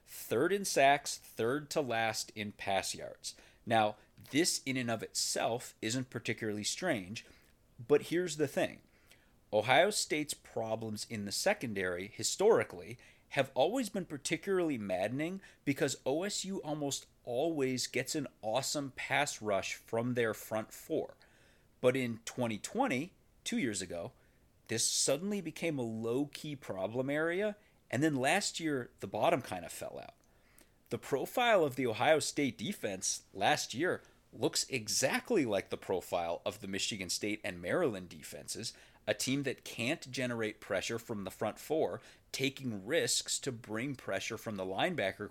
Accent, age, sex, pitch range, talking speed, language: American, 30-49, male, 110-150 Hz, 145 wpm, English